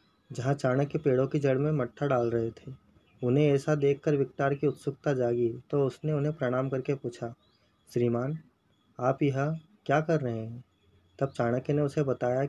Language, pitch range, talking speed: Hindi, 120-150 Hz, 175 wpm